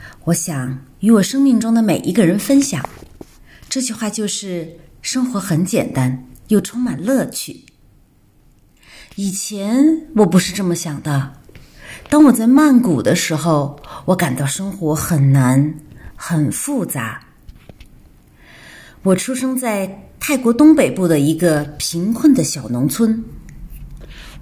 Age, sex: 30-49, female